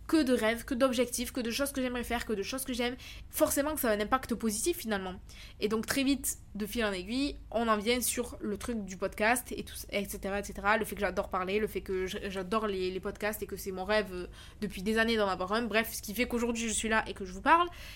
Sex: female